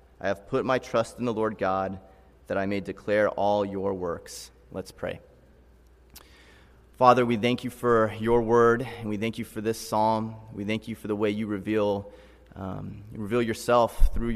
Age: 30-49